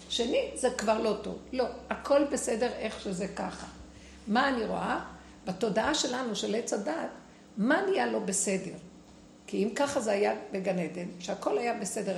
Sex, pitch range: female, 210-270 Hz